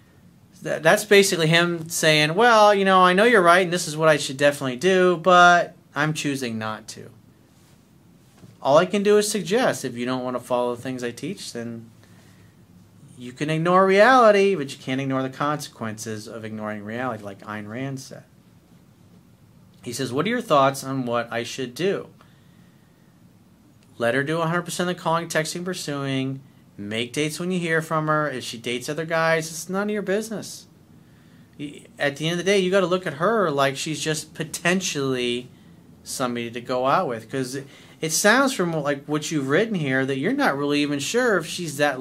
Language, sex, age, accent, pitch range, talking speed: English, male, 40-59, American, 130-180 Hz, 190 wpm